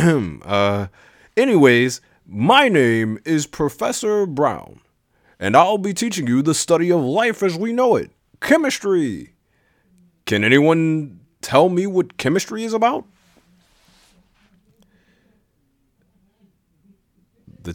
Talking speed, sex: 100 wpm, male